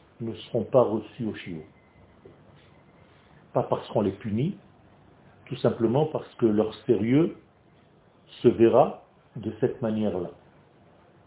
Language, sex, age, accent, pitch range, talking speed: French, male, 40-59, French, 110-130 Hz, 115 wpm